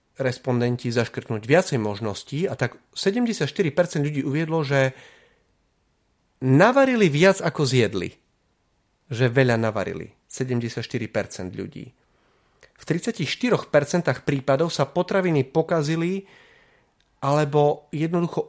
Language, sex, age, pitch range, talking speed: Slovak, male, 30-49, 115-155 Hz, 90 wpm